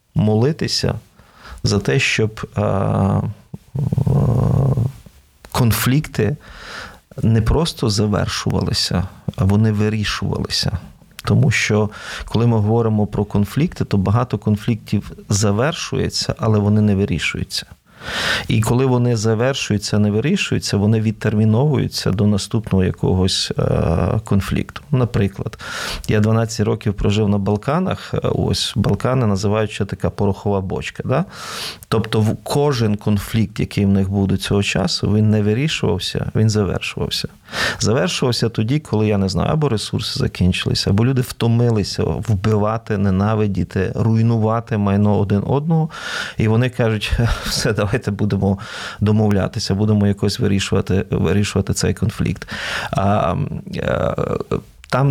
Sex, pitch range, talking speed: male, 100-120 Hz, 115 wpm